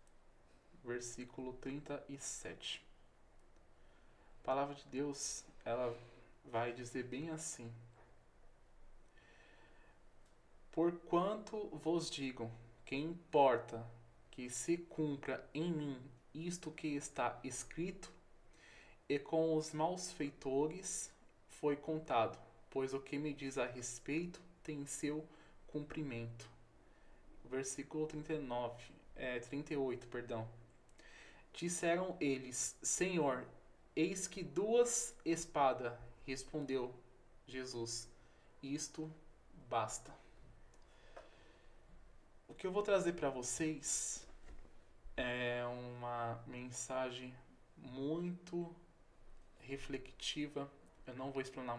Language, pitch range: Portuguese, 125-160 Hz